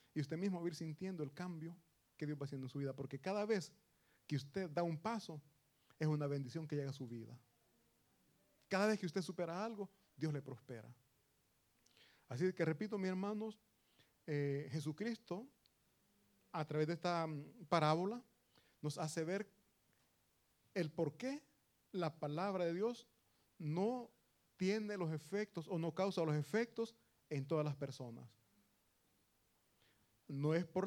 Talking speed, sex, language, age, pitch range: 155 wpm, male, Italian, 40-59, 135-195 Hz